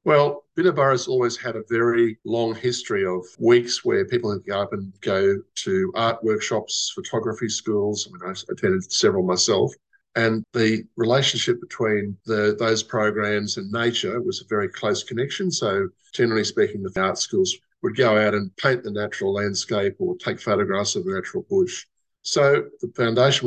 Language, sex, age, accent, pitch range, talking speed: English, male, 50-69, Australian, 105-165 Hz, 170 wpm